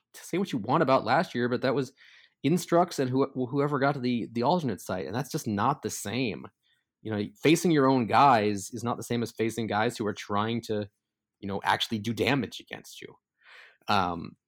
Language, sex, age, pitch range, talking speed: English, male, 20-39, 110-130 Hz, 215 wpm